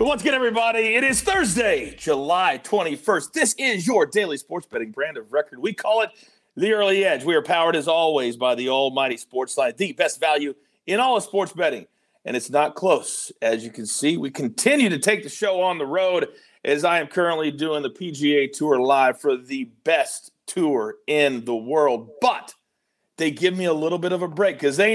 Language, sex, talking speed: English, male, 210 wpm